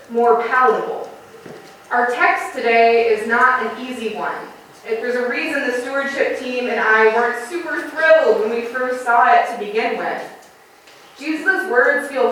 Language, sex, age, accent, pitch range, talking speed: English, female, 20-39, American, 230-305 Hz, 160 wpm